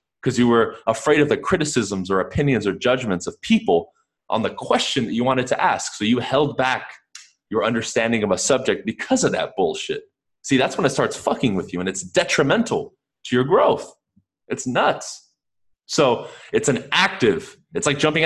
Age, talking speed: 20-39, 185 wpm